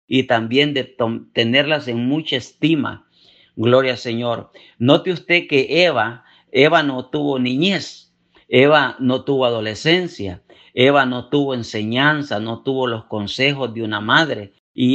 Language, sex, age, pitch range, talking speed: Spanish, male, 50-69, 115-150 Hz, 135 wpm